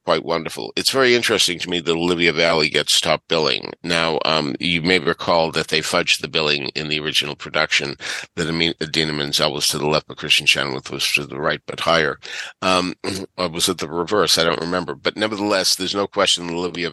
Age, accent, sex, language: 50-69, American, male, English